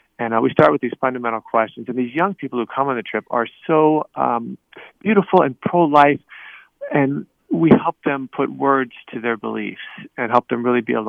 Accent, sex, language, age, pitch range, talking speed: American, male, English, 40-59, 115-135 Hz, 205 wpm